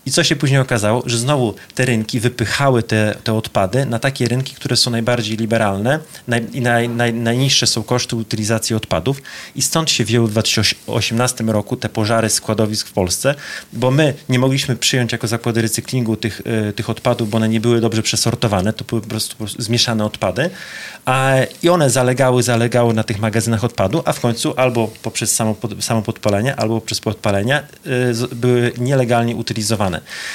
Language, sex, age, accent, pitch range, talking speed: Polish, male, 30-49, native, 110-125 Hz, 180 wpm